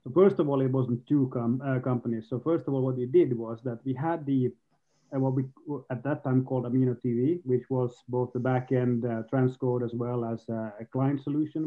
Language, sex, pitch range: English, male, 120-140 Hz